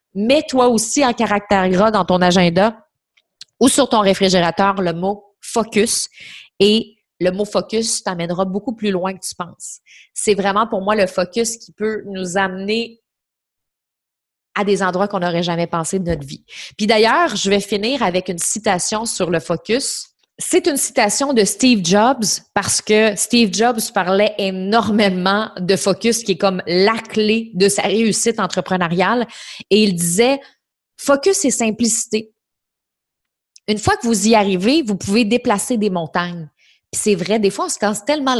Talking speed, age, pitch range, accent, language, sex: 165 wpm, 30-49, 185-225 Hz, Canadian, French, female